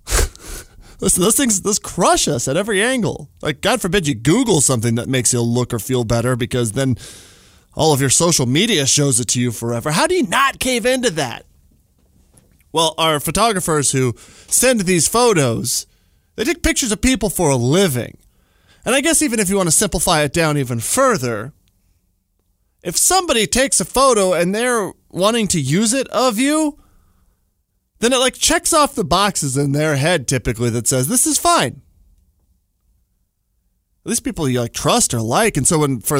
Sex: male